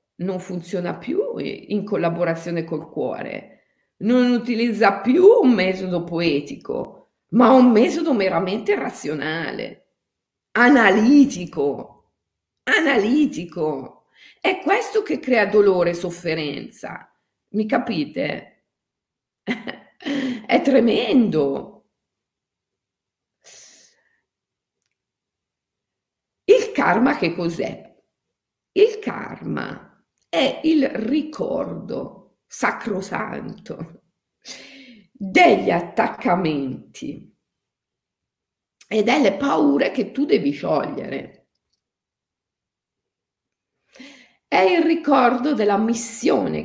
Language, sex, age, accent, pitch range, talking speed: Italian, female, 50-69, native, 170-260 Hz, 70 wpm